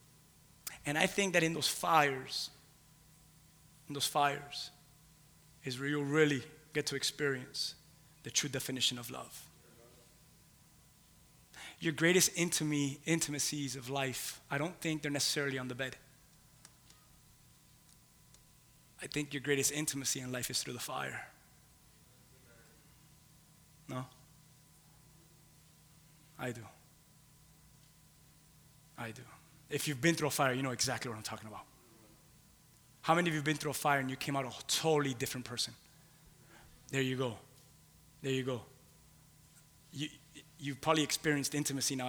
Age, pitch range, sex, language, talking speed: 20-39, 130-155 Hz, male, English, 130 wpm